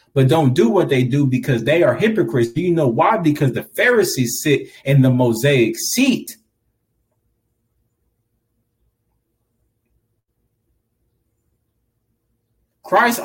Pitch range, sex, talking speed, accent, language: 115-175 Hz, male, 105 wpm, American, English